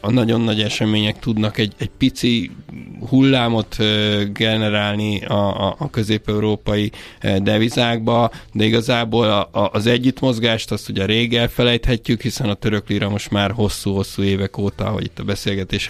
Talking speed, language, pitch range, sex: 135 wpm, Hungarian, 100-115 Hz, male